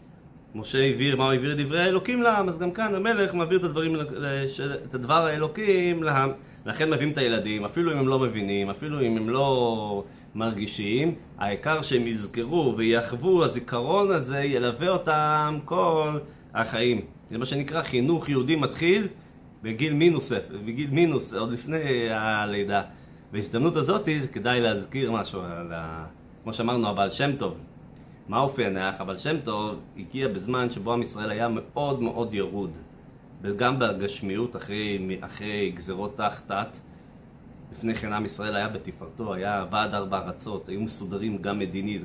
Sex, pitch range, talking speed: male, 100-140 Hz, 145 wpm